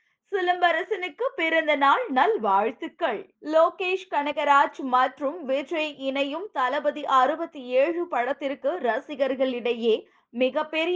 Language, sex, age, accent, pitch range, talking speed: Tamil, female, 20-39, native, 250-315 Hz, 55 wpm